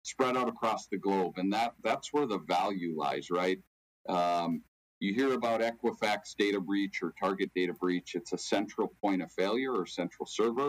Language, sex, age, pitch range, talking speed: English, male, 50-69, 85-100 Hz, 180 wpm